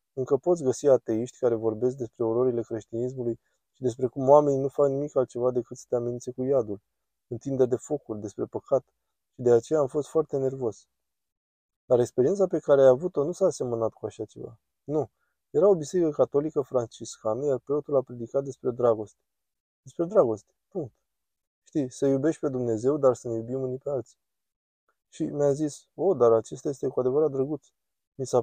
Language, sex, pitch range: Romanian, male, 115-140 Hz